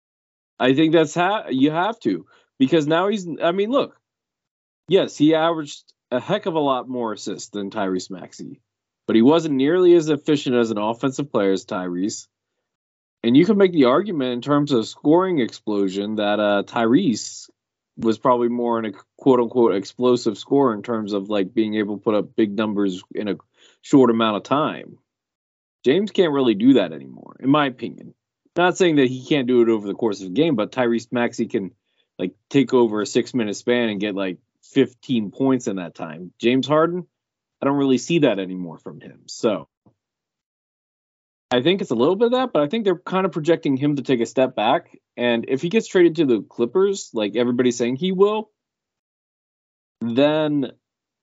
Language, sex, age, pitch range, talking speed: English, male, 20-39, 105-155 Hz, 190 wpm